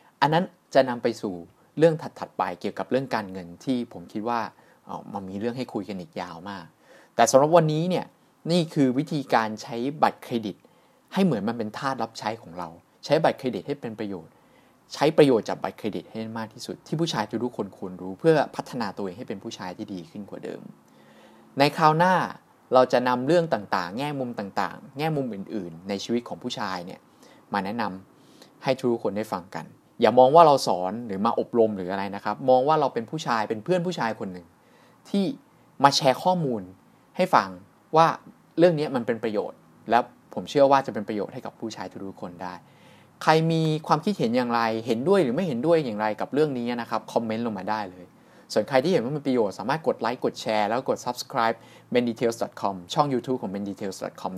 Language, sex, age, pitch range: Thai, male, 20-39, 100-150 Hz